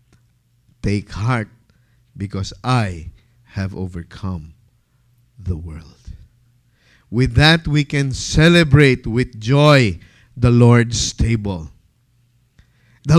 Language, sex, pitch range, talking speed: English, male, 120-175 Hz, 85 wpm